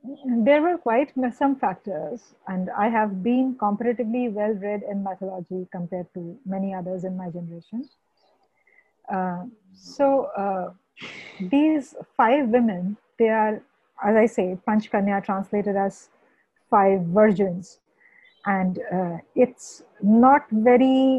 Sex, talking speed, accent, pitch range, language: female, 115 wpm, Indian, 195-250 Hz, English